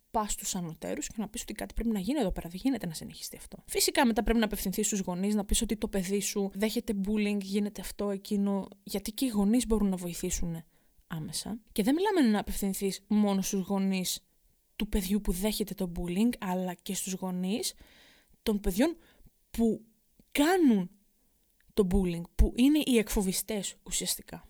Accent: native